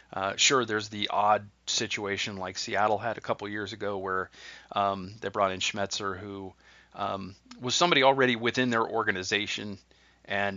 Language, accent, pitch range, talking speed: English, American, 105-130 Hz, 160 wpm